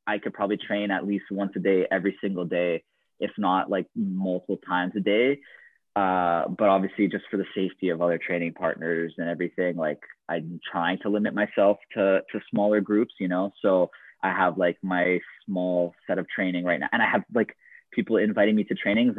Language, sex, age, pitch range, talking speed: English, male, 20-39, 90-100 Hz, 200 wpm